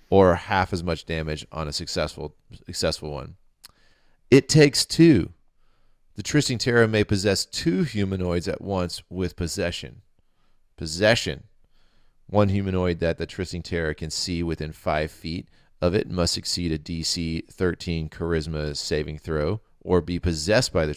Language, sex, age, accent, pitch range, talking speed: English, male, 30-49, American, 85-100 Hz, 145 wpm